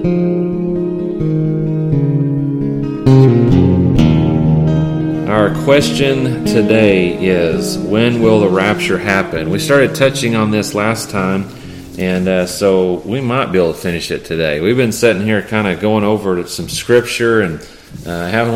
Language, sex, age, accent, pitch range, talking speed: English, male, 40-59, American, 85-110 Hz, 130 wpm